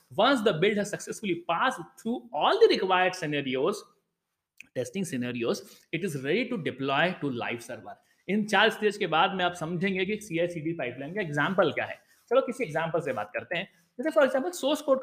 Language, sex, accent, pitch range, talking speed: Hindi, male, native, 170-245 Hz, 195 wpm